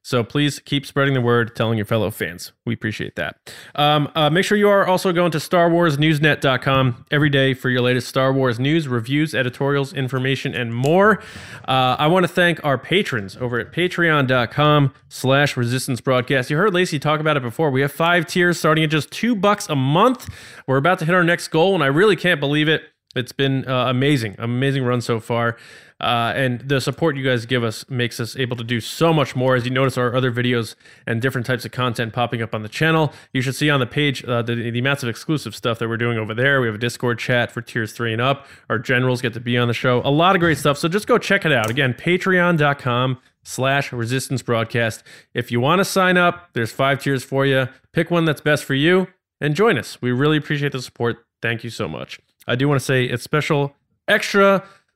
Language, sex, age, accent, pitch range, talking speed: English, male, 20-39, American, 120-155 Hz, 225 wpm